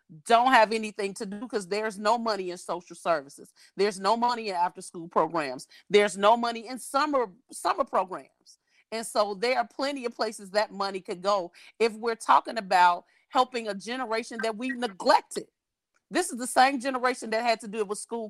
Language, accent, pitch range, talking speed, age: English, American, 205-255 Hz, 195 wpm, 40-59